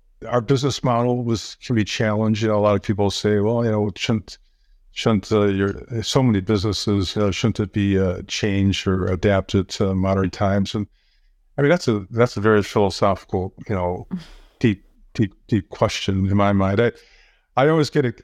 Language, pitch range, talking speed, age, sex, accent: English, 100-125 Hz, 190 wpm, 50-69, male, American